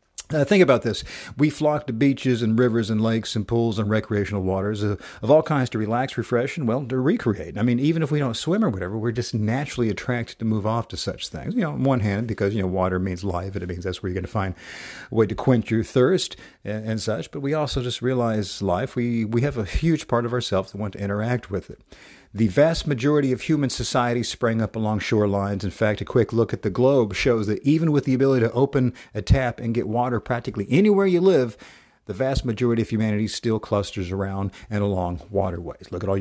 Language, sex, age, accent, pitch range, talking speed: English, male, 50-69, American, 100-125 Hz, 240 wpm